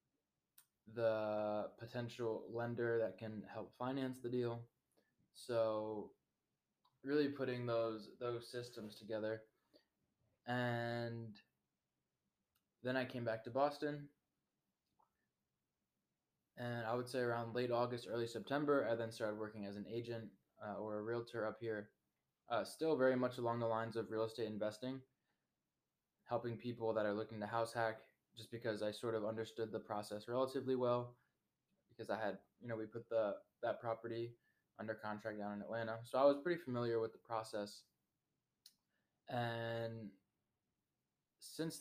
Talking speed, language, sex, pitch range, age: 140 wpm, English, male, 110-125 Hz, 20-39